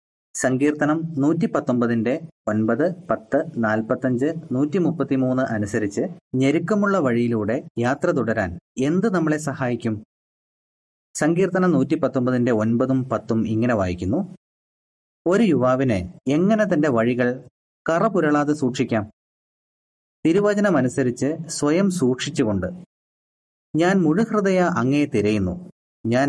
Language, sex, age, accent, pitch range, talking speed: Malayalam, male, 30-49, native, 110-155 Hz, 85 wpm